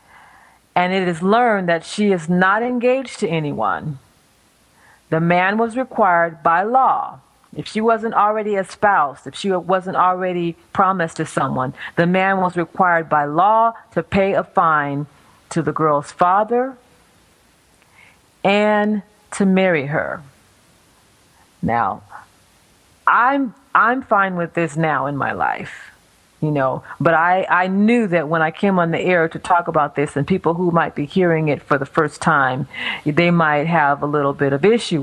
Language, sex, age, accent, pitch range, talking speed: English, female, 40-59, American, 160-210 Hz, 160 wpm